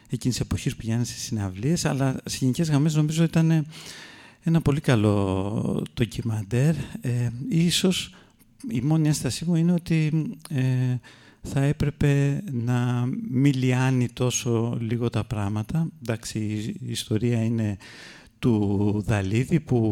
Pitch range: 110-135 Hz